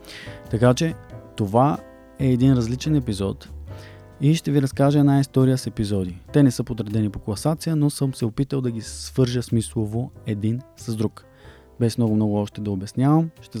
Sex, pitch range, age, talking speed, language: male, 105-130 Hz, 20-39, 170 wpm, Bulgarian